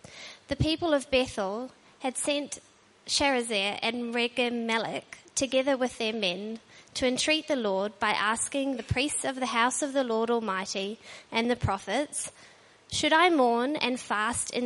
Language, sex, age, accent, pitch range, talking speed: English, female, 20-39, Australian, 230-275 Hz, 150 wpm